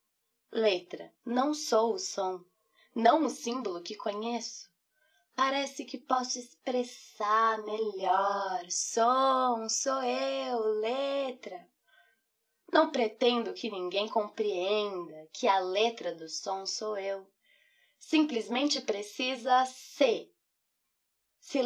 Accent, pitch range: Brazilian, 205-265 Hz